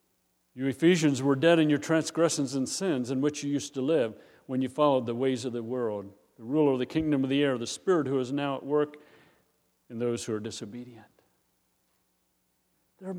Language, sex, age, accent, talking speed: English, male, 50-69, American, 200 wpm